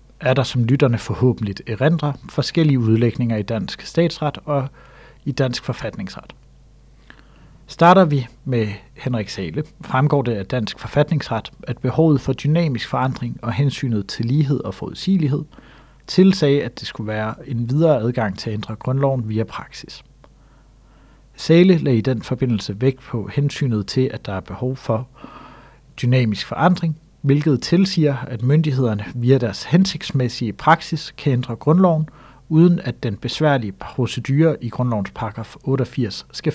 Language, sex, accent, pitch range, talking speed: Danish, male, native, 115-150 Hz, 145 wpm